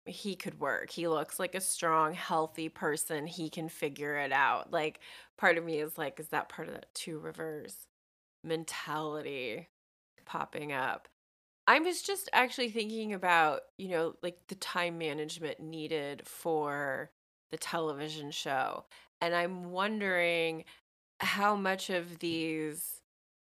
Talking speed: 140 wpm